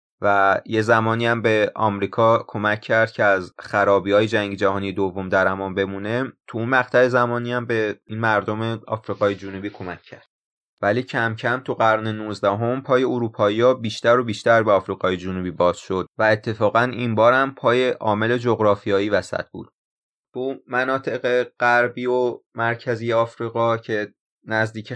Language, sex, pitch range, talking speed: Persian, male, 105-120 Hz, 160 wpm